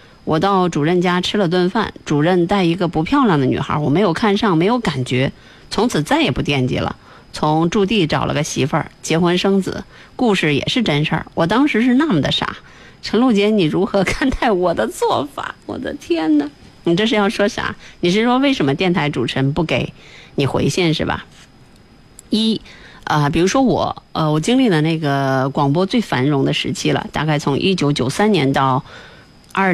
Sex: female